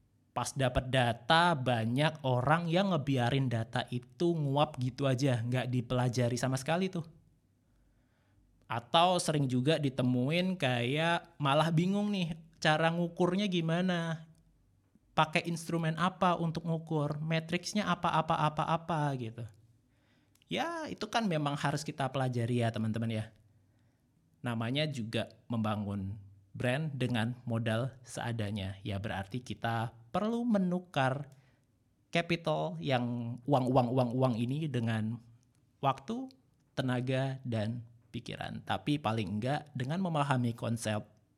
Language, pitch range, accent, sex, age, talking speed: Indonesian, 115-155 Hz, native, male, 20-39, 110 wpm